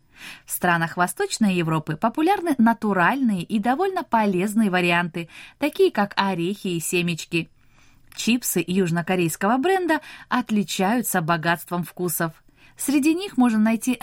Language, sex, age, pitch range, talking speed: Russian, female, 20-39, 175-250 Hz, 105 wpm